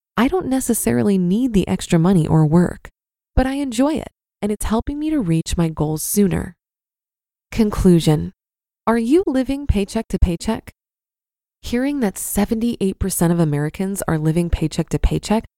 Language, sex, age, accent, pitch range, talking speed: English, female, 20-39, American, 185-240 Hz, 150 wpm